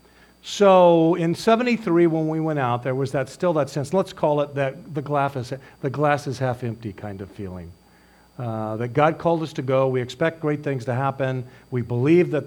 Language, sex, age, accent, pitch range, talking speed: English, male, 50-69, American, 120-160 Hz, 210 wpm